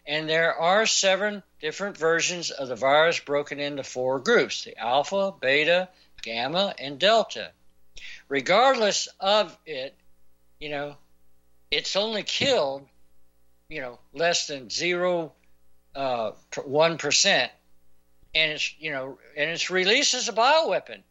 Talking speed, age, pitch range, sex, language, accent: 125 wpm, 60-79, 140-195 Hz, male, English, American